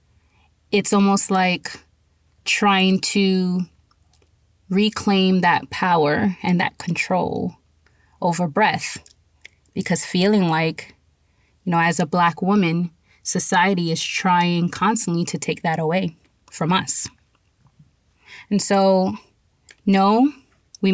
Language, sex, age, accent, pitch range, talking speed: English, female, 20-39, American, 155-200 Hz, 105 wpm